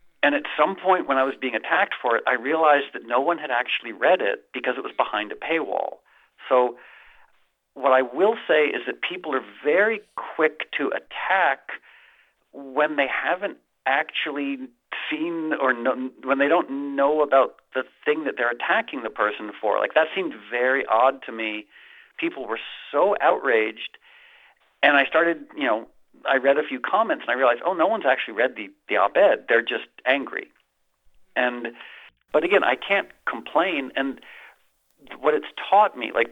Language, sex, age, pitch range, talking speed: English, male, 40-59, 125-160 Hz, 175 wpm